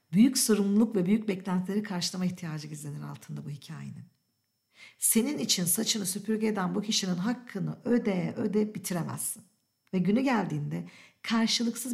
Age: 50-69